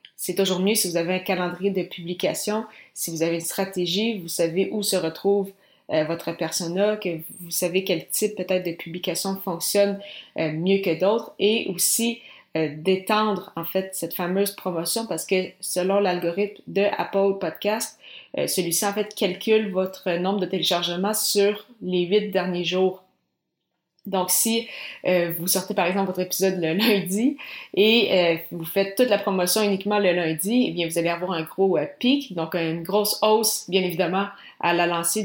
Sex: female